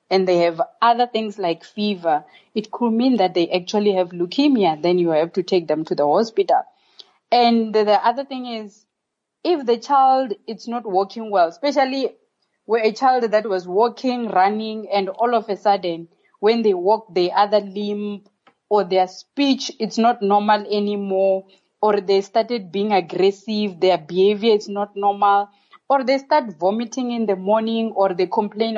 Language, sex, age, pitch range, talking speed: English, female, 30-49, 185-235 Hz, 170 wpm